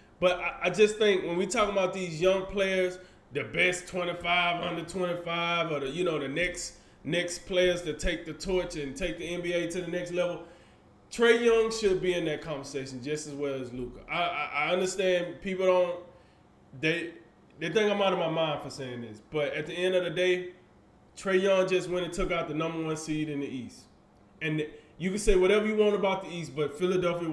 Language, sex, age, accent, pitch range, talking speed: English, male, 20-39, American, 155-190 Hz, 215 wpm